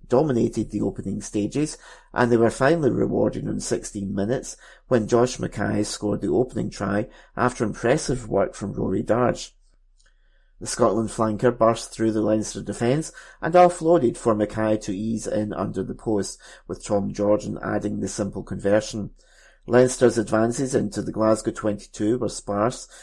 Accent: British